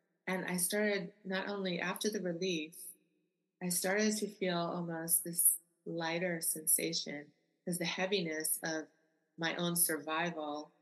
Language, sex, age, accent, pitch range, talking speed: English, female, 30-49, American, 155-185 Hz, 130 wpm